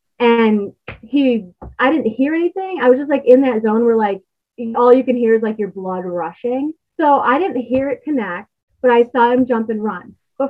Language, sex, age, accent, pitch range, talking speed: English, female, 20-39, American, 200-250 Hz, 215 wpm